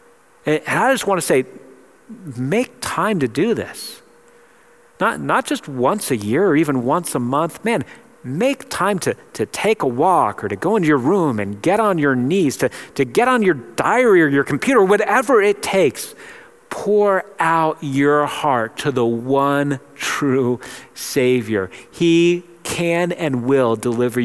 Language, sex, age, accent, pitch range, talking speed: English, male, 40-59, American, 120-170 Hz, 165 wpm